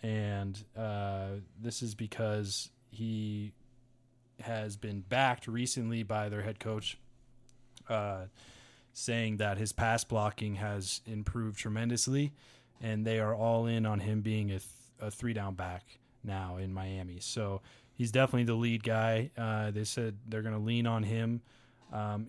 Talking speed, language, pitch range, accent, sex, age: 150 wpm, English, 105-125 Hz, American, male, 20-39